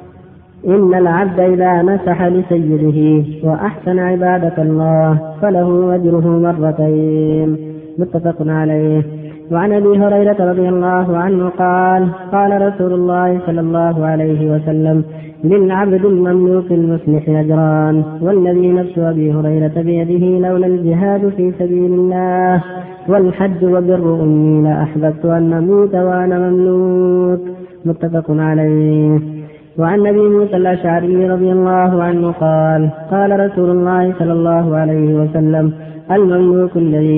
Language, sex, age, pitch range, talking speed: Arabic, female, 20-39, 155-180 Hz, 110 wpm